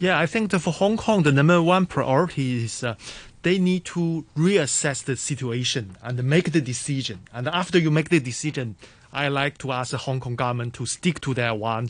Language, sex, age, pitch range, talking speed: English, male, 30-49, 125-160 Hz, 210 wpm